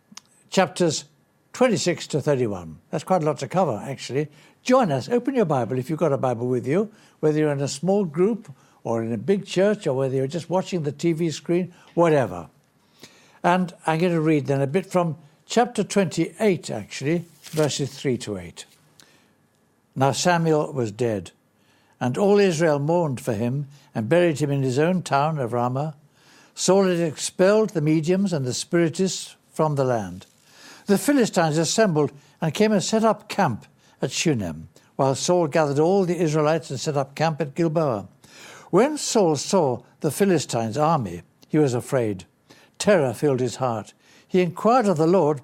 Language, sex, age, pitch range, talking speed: English, male, 60-79, 135-180 Hz, 170 wpm